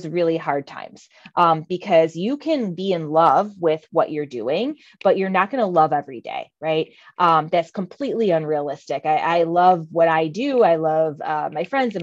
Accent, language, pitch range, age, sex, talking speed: American, English, 160-200 Hz, 20-39, female, 195 wpm